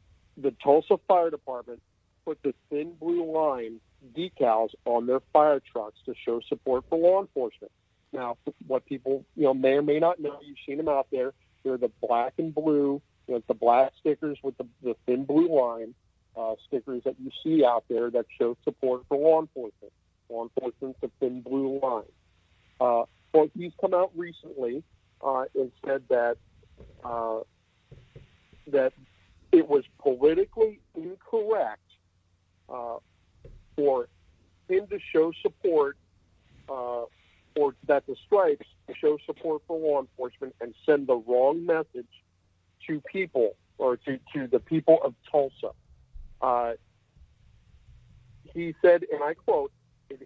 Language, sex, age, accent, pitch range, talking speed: English, male, 50-69, American, 115-175 Hz, 145 wpm